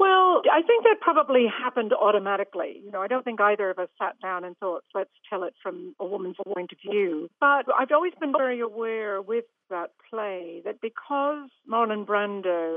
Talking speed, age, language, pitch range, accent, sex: 195 wpm, 60-79, English, 195-245 Hz, British, female